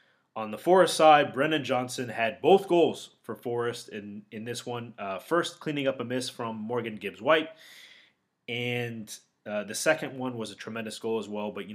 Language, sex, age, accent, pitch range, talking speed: English, male, 20-39, American, 110-135 Hz, 190 wpm